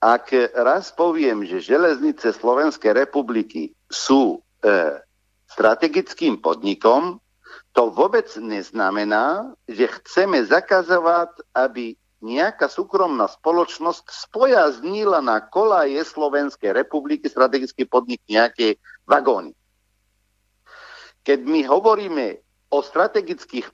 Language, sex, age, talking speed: Slovak, male, 50-69, 90 wpm